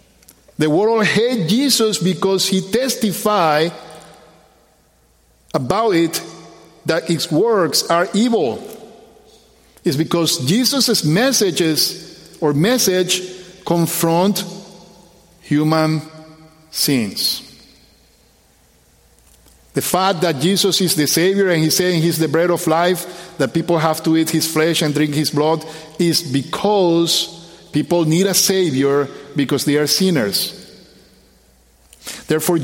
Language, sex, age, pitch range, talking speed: English, male, 50-69, 155-190 Hz, 110 wpm